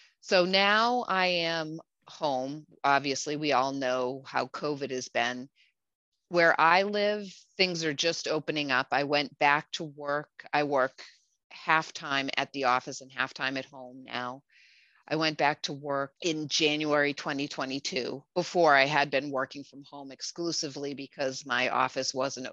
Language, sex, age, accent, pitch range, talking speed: English, female, 30-49, American, 135-160 Hz, 155 wpm